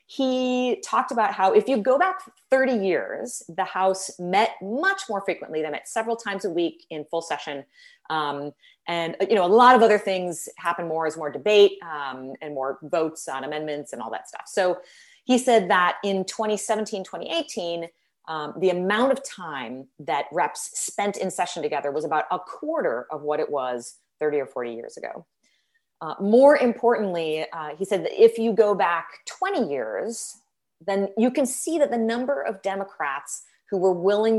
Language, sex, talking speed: English, female, 185 wpm